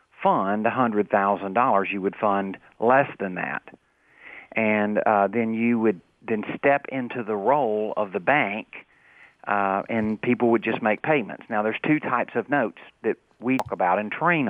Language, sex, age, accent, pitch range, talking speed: English, male, 50-69, American, 105-130 Hz, 165 wpm